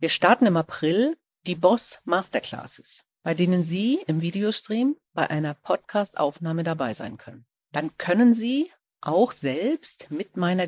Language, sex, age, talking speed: German, female, 50-69, 140 wpm